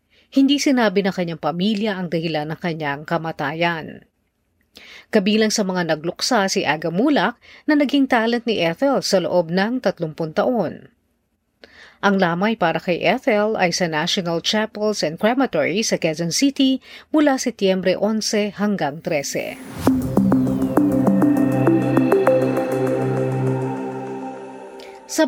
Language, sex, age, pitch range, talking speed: Filipino, female, 40-59, 175-245 Hz, 110 wpm